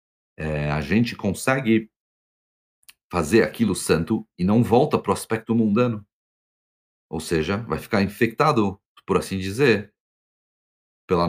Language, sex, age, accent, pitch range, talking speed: Portuguese, male, 40-59, Brazilian, 85-115 Hz, 115 wpm